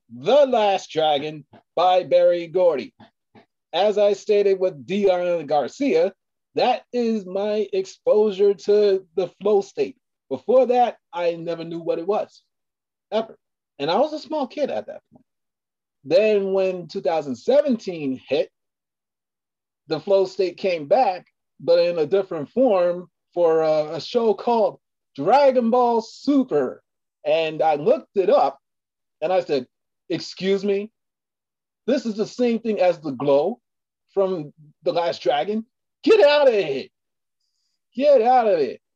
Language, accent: English, American